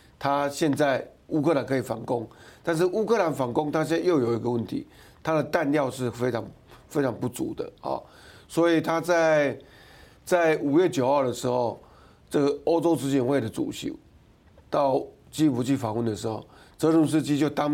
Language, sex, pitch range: Chinese, male, 125-155 Hz